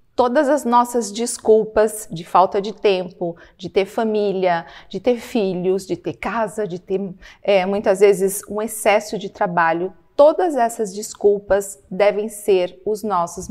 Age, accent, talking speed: 40-59, Brazilian, 140 wpm